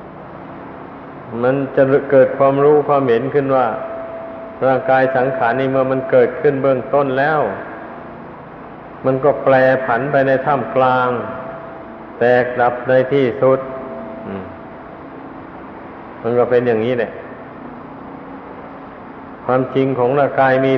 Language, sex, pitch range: Thai, male, 125-135 Hz